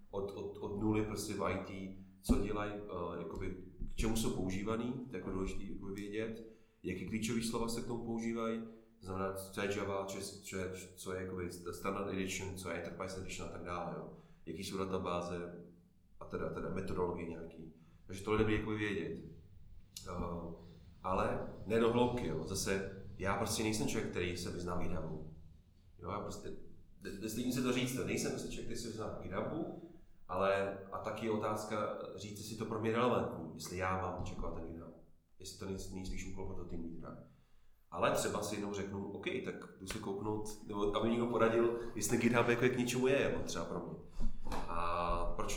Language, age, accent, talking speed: Czech, 30-49, native, 185 wpm